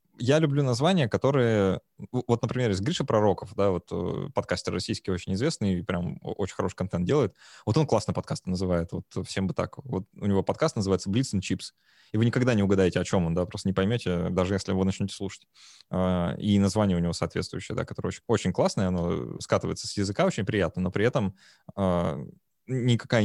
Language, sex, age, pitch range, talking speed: Russian, male, 20-39, 95-125 Hz, 190 wpm